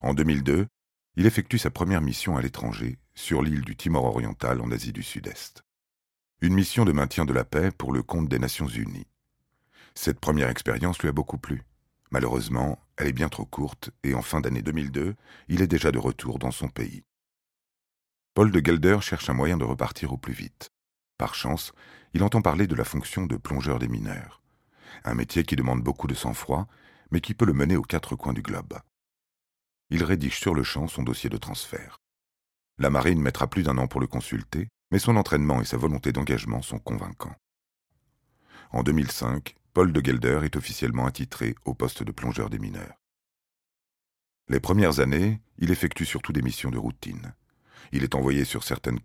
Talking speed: 185 wpm